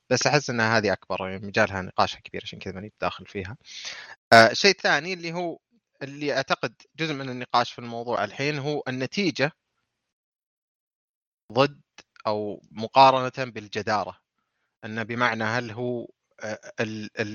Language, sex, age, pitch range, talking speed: Arabic, male, 30-49, 105-130 Hz, 130 wpm